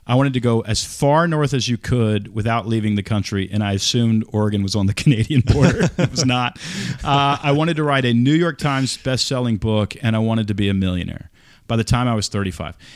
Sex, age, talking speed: male, 40-59, 230 wpm